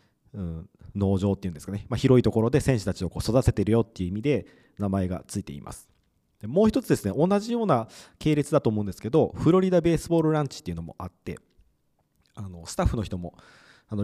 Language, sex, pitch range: Japanese, male, 95-140 Hz